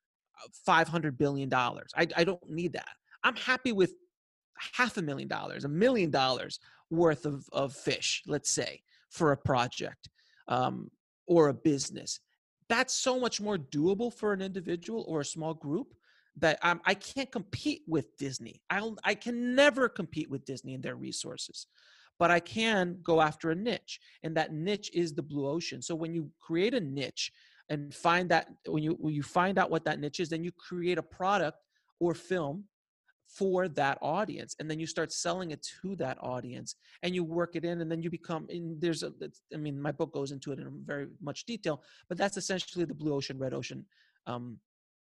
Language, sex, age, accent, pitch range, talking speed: English, male, 40-59, American, 155-200 Hz, 190 wpm